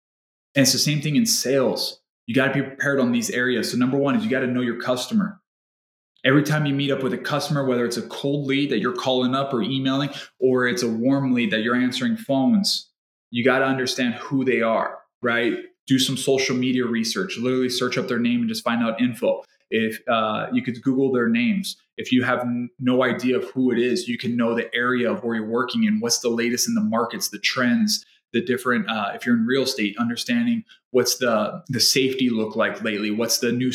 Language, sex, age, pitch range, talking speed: English, male, 20-39, 120-150 Hz, 230 wpm